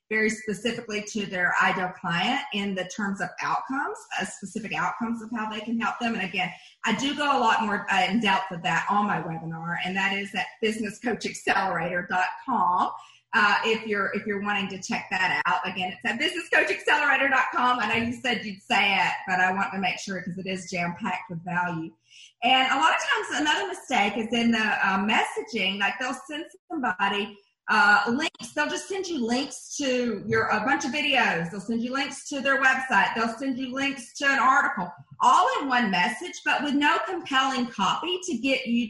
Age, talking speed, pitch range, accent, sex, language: 40-59, 200 wpm, 195-260 Hz, American, female, English